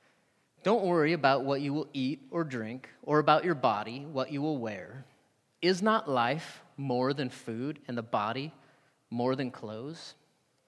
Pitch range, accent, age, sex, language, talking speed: 130-175 Hz, American, 30-49, male, English, 165 wpm